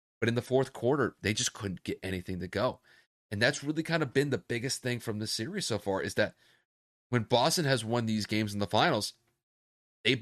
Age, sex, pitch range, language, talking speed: 30-49, male, 95-125 Hz, English, 215 wpm